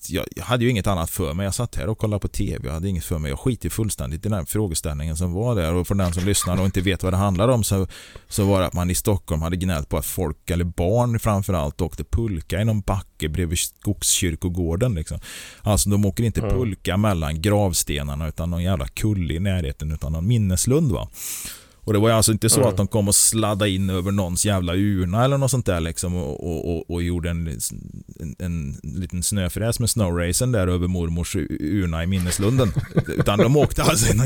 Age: 30-49